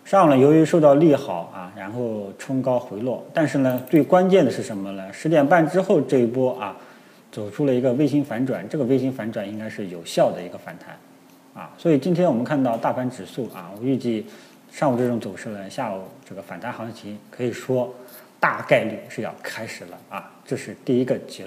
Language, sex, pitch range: Chinese, male, 110-155 Hz